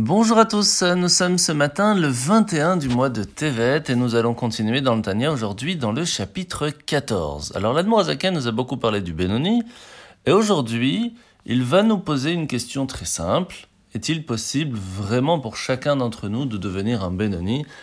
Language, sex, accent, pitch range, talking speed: French, male, French, 115-175 Hz, 180 wpm